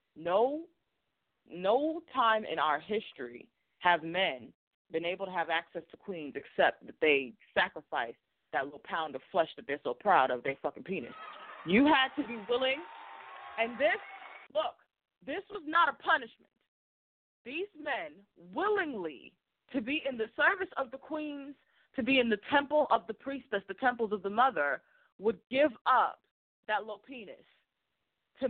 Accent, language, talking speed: American, English, 160 wpm